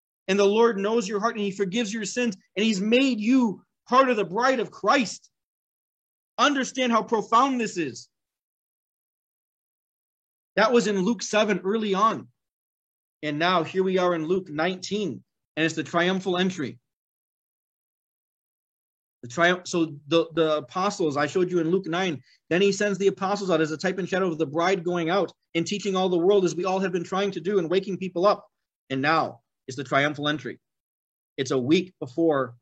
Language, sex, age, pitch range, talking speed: English, male, 40-59, 160-205 Hz, 185 wpm